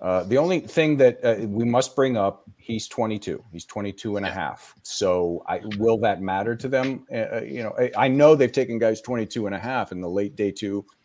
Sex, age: male, 40-59